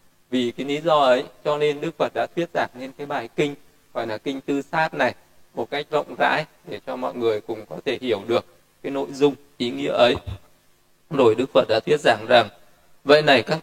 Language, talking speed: Vietnamese, 225 wpm